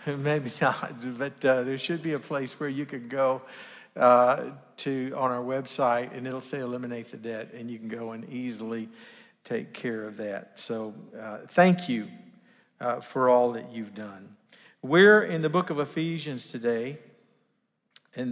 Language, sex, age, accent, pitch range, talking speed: English, male, 50-69, American, 120-150 Hz, 170 wpm